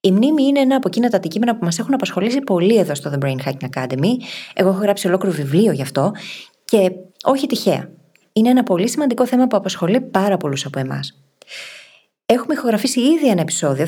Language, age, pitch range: Greek, 20-39, 160-220 Hz